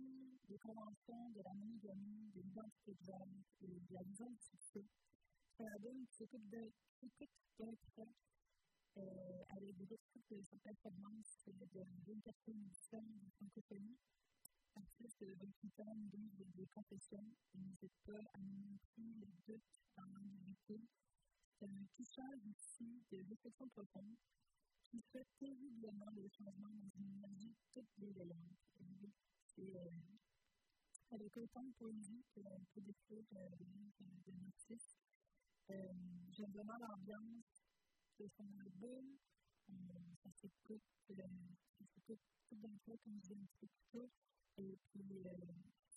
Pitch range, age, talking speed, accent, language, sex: 195-230 Hz, 50-69, 70 wpm, American, English, female